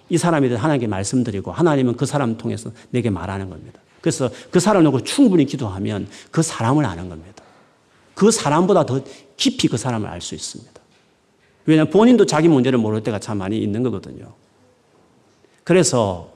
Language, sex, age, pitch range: Korean, male, 40-59, 110-165 Hz